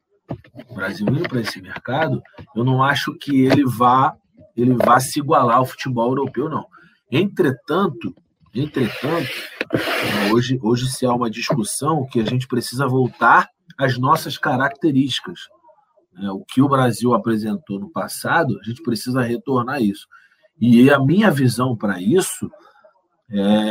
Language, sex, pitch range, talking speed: Portuguese, male, 115-145 Hz, 145 wpm